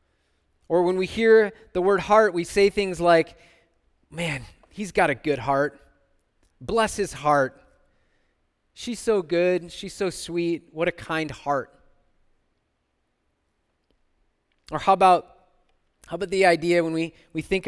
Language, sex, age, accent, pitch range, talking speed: English, male, 20-39, American, 165-210 Hz, 140 wpm